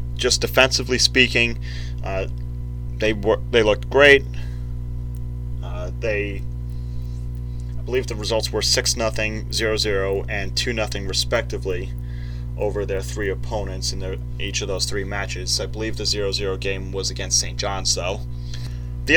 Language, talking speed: English, 145 wpm